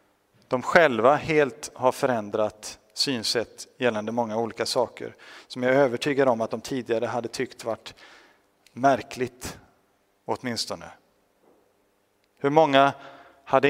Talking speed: 110 wpm